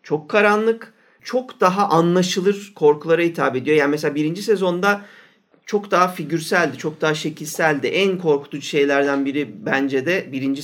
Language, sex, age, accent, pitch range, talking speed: Turkish, male, 50-69, native, 150-210 Hz, 140 wpm